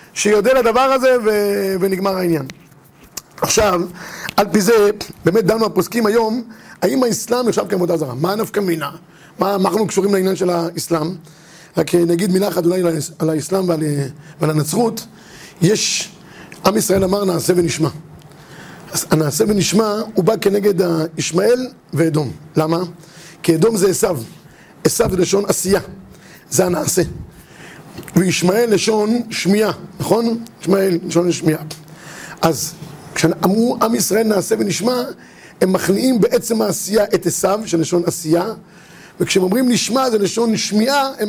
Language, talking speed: Hebrew, 130 wpm